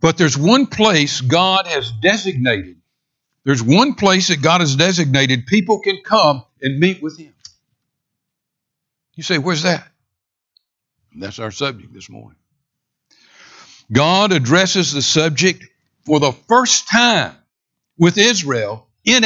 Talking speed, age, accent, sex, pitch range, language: 130 wpm, 60-79, American, male, 125-175 Hz, English